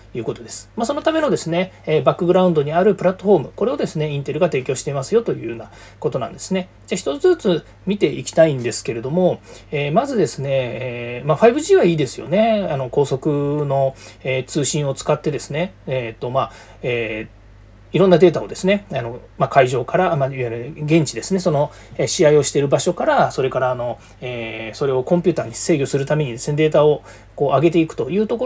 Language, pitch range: Japanese, 125-185 Hz